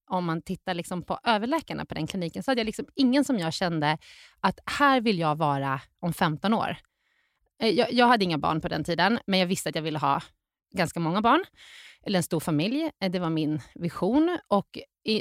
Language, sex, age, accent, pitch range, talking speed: Swedish, female, 30-49, native, 160-225 Hz, 210 wpm